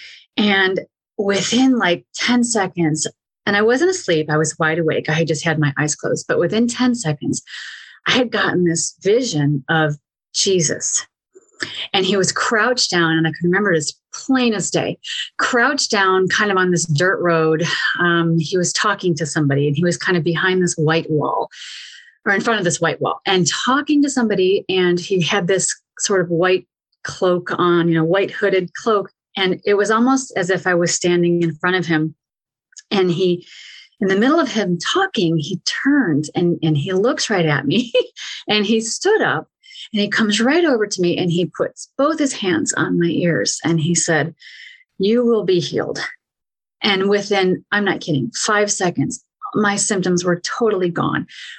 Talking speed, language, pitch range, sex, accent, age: 190 wpm, English, 165-215 Hz, female, American, 30-49